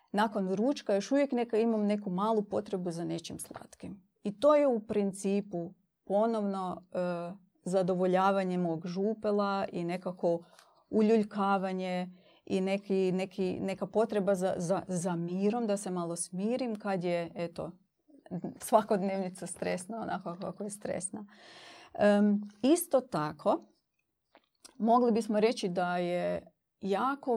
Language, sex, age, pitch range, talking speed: Croatian, female, 30-49, 185-220 Hz, 120 wpm